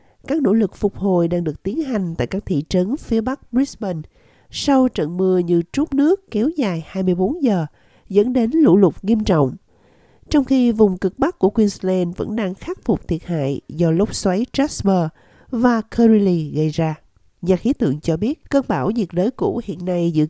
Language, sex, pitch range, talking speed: Vietnamese, female, 165-225 Hz, 195 wpm